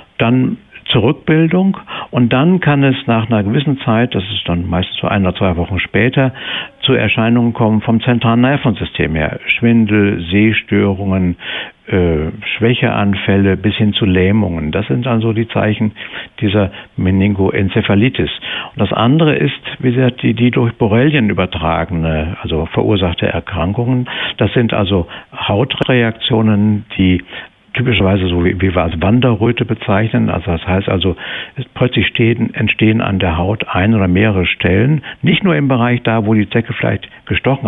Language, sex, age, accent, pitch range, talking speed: German, male, 60-79, German, 95-125 Hz, 150 wpm